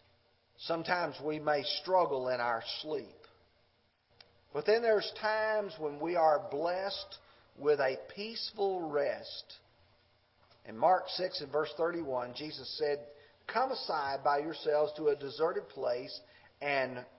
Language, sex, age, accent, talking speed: English, male, 50-69, American, 125 wpm